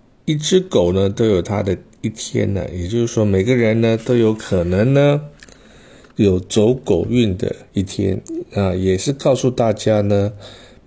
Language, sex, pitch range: Chinese, male, 95-120 Hz